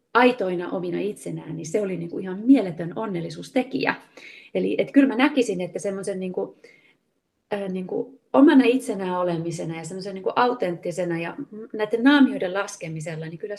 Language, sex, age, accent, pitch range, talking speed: Finnish, female, 30-49, native, 175-230 Hz, 160 wpm